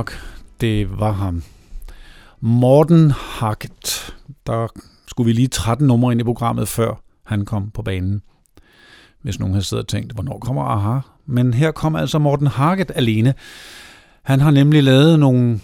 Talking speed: 155 wpm